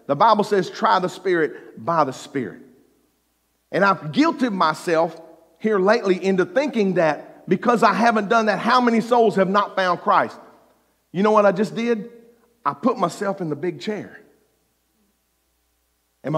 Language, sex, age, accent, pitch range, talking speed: English, male, 50-69, American, 145-230 Hz, 160 wpm